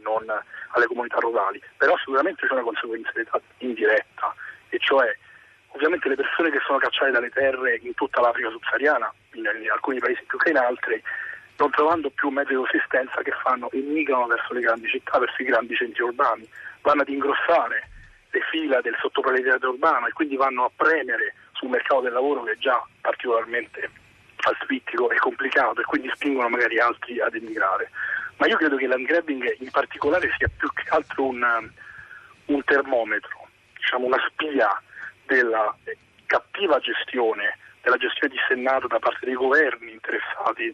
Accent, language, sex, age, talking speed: native, Italian, male, 40-59, 160 wpm